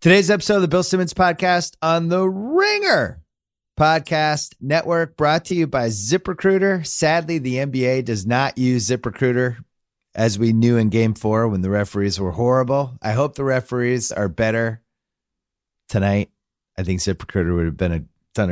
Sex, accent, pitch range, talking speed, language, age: male, American, 95-130 Hz, 155 wpm, English, 30-49